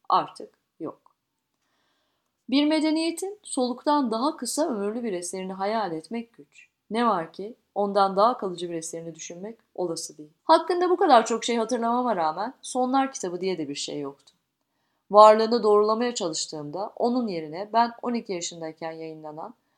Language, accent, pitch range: Turkish, native, 180-230 Hz